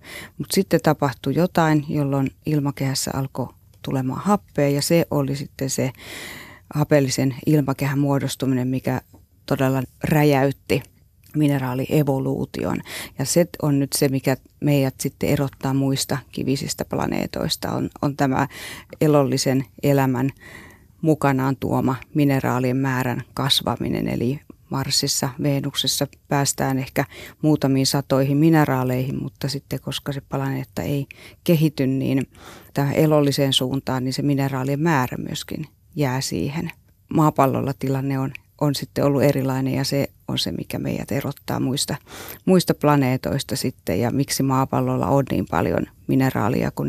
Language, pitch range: Finnish, 130-145 Hz